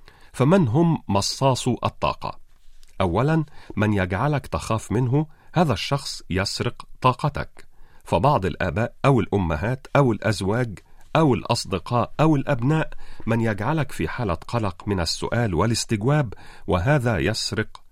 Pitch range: 90-140 Hz